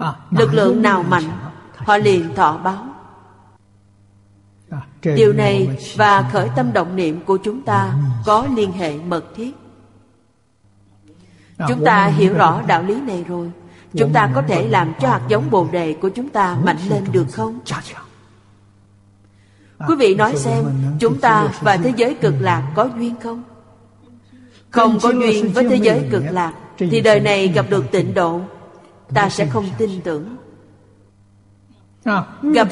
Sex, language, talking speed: female, Vietnamese, 150 wpm